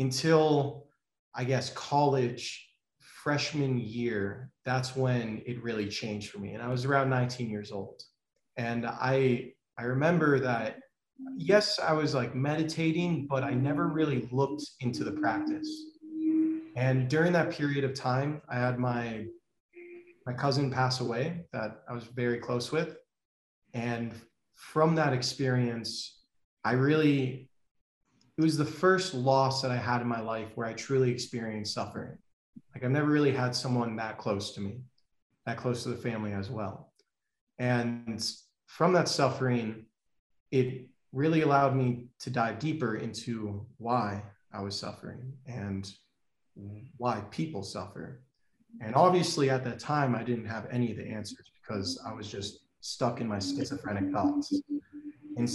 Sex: male